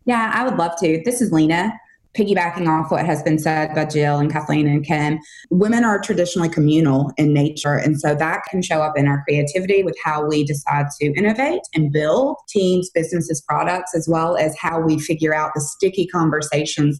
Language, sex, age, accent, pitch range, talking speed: English, female, 20-39, American, 150-180 Hz, 200 wpm